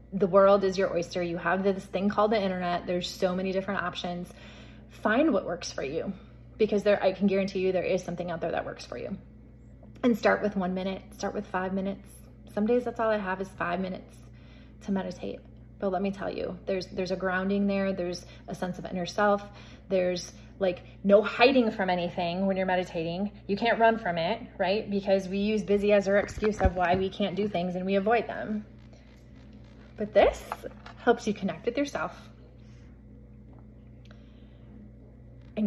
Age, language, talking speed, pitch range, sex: 20-39, English, 190 wpm, 180-210 Hz, female